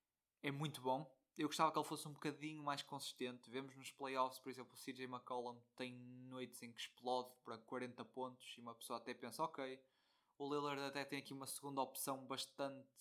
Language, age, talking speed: Portuguese, 20-39, 200 wpm